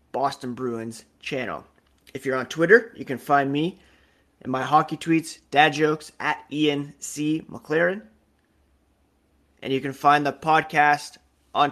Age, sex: 30-49, male